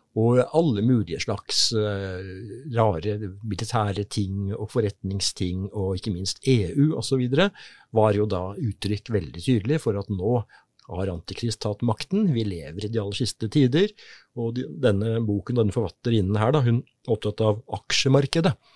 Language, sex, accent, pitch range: English, male, Norwegian, 105-140 Hz